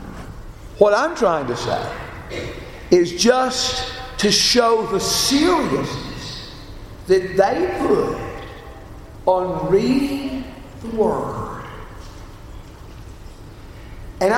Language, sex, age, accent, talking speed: English, male, 60-79, American, 80 wpm